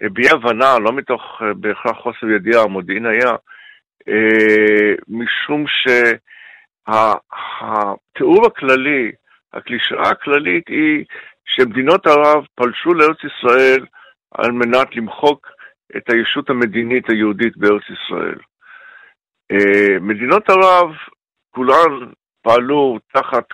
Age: 60-79